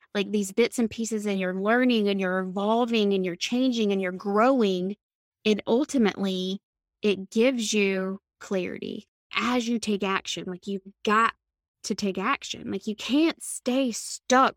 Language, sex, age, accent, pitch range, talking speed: English, female, 20-39, American, 200-250 Hz, 155 wpm